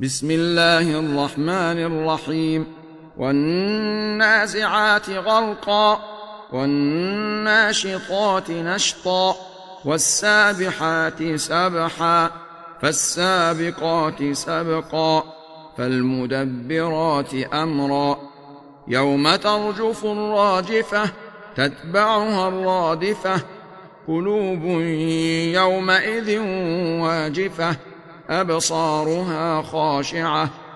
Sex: male